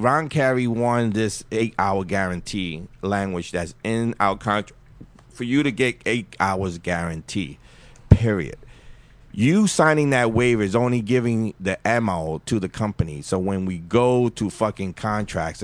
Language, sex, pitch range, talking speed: English, male, 105-130 Hz, 145 wpm